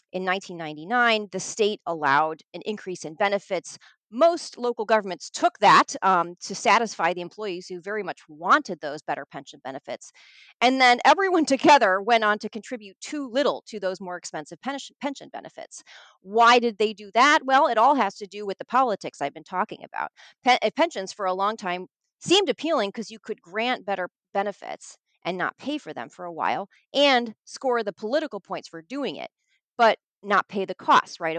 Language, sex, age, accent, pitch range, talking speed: English, female, 30-49, American, 185-250 Hz, 185 wpm